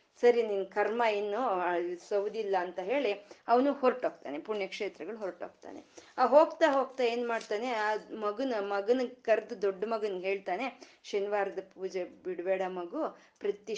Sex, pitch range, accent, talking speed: female, 190-240 Hz, native, 120 wpm